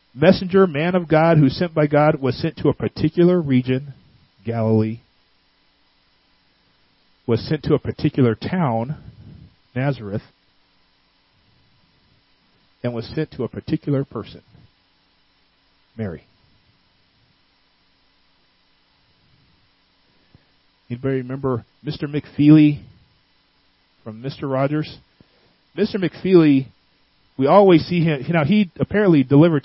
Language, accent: English, American